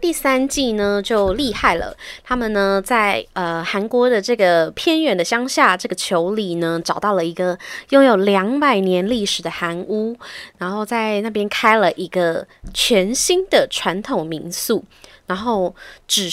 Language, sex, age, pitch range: Chinese, female, 20-39, 175-230 Hz